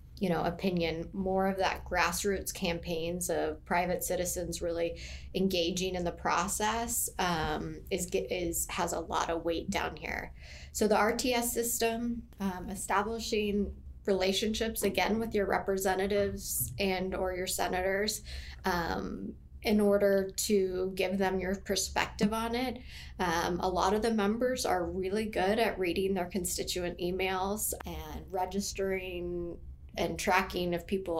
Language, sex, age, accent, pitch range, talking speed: English, female, 10-29, American, 185-225 Hz, 135 wpm